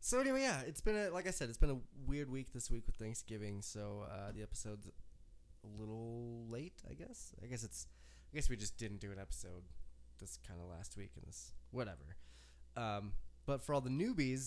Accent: American